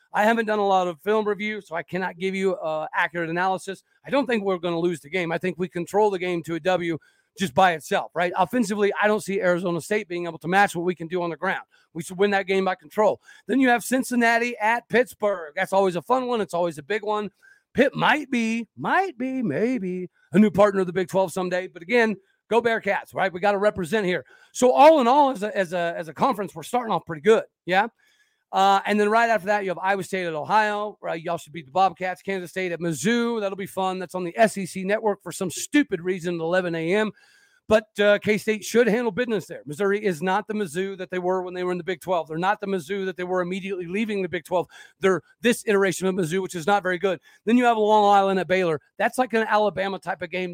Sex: male